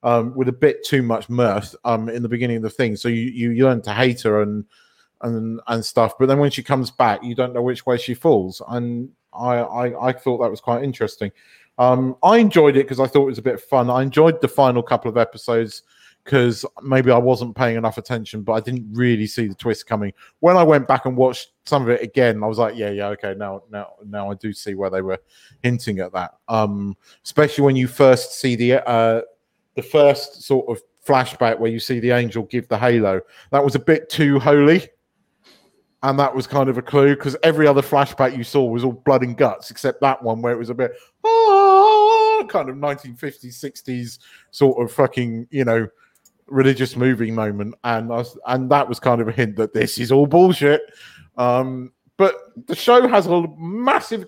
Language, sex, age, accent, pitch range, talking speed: English, male, 30-49, British, 115-140 Hz, 215 wpm